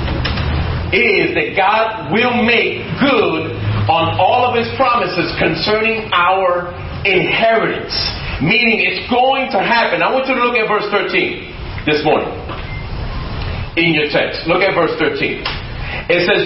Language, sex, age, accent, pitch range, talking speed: English, male, 40-59, American, 165-235 Hz, 140 wpm